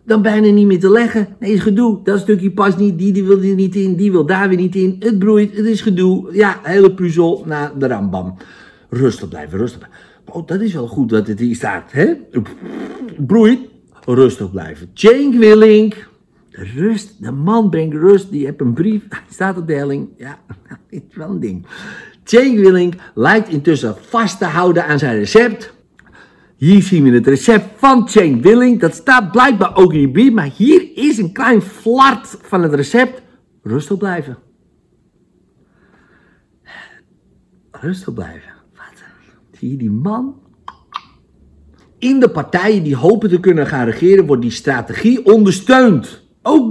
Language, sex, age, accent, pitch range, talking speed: Dutch, male, 60-79, Dutch, 145-220 Hz, 170 wpm